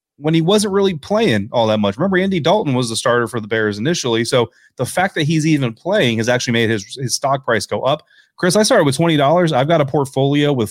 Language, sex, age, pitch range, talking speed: English, male, 30-49, 115-155 Hz, 245 wpm